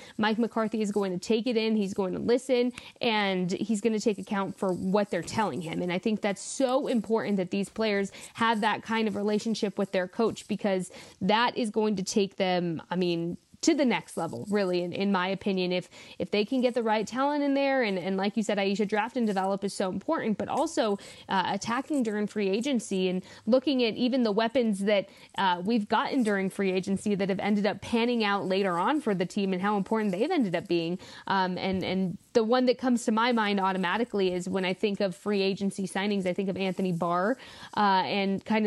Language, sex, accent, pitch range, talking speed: English, female, American, 190-230 Hz, 225 wpm